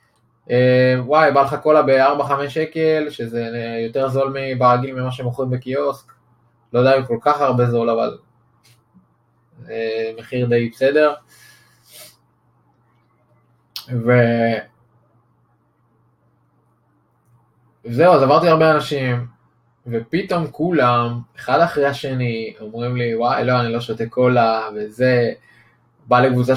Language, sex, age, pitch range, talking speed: Hebrew, male, 20-39, 120-140 Hz, 95 wpm